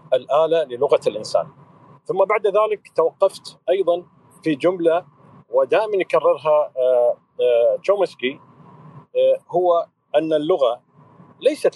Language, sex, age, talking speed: Arabic, male, 40-59, 85 wpm